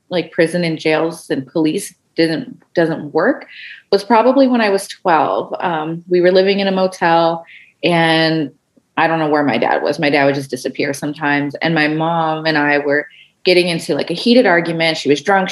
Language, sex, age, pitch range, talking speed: English, female, 30-49, 160-205 Hz, 195 wpm